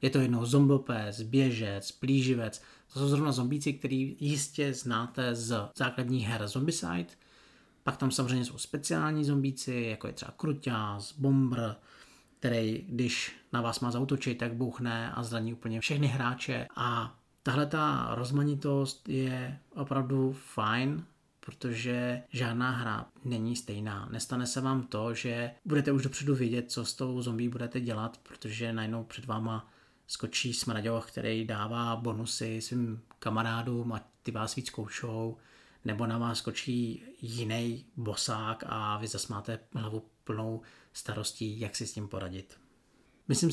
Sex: male